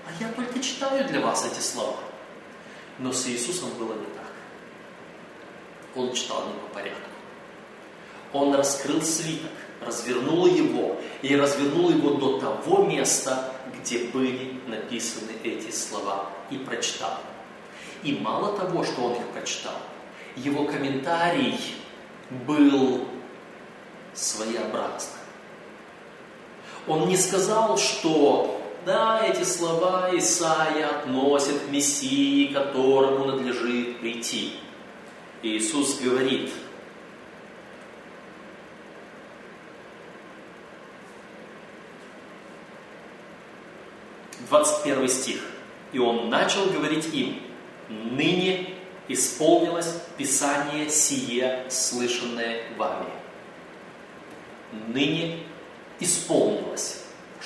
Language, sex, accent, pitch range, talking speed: Russian, male, native, 130-185 Hz, 80 wpm